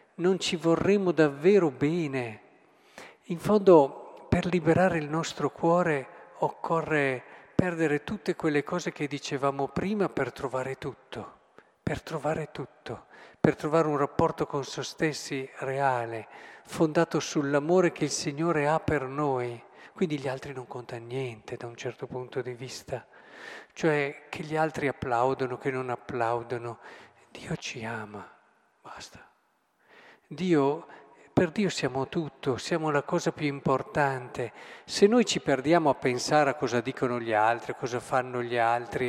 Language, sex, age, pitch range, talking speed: Italian, male, 50-69, 130-175 Hz, 140 wpm